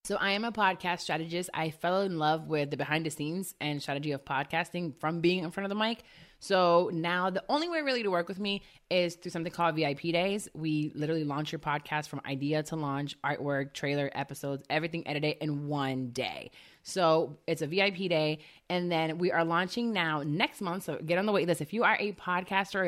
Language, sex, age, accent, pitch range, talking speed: English, female, 20-39, American, 155-200 Hz, 220 wpm